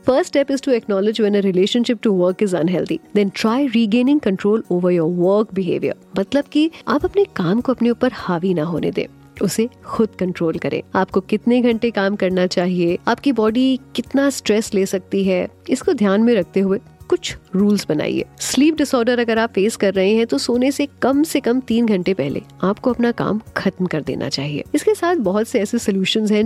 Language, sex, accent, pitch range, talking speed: Hindi, female, native, 185-250 Hz, 165 wpm